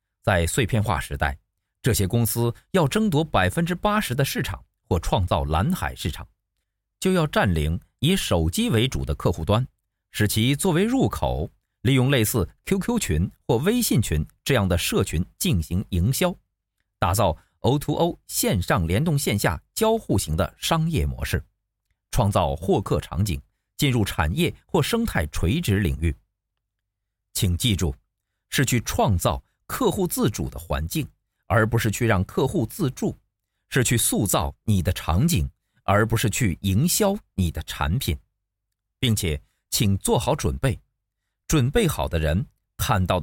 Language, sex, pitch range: Chinese, male, 90-120 Hz